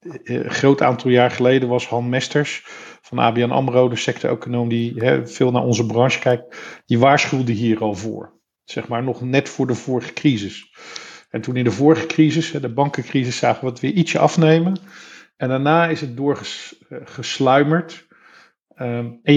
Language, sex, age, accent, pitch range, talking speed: Dutch, male, 50-69, Dutch, 120-150 Hz, 165 wpm